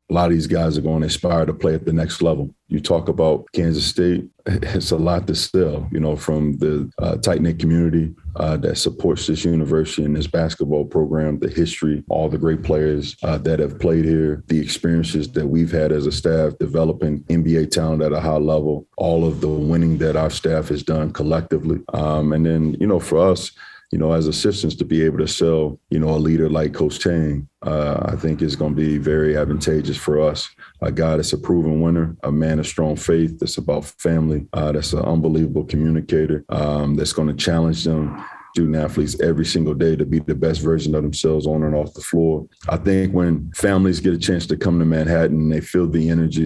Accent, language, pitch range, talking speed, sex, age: American, English, 75-80 Hz, 215 wpm, male, 40-59